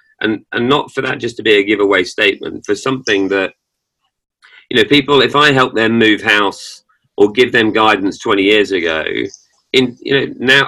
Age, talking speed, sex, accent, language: 40-59, 190 wpm, male, British, English